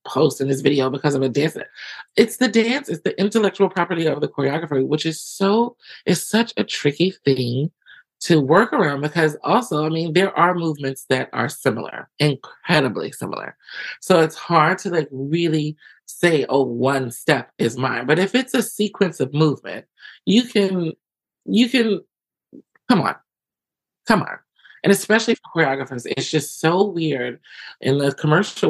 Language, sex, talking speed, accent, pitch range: English, male, 165 wpm, American, 145-200 Hz